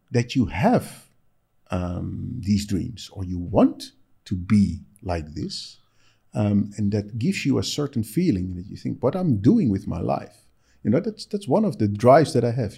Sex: male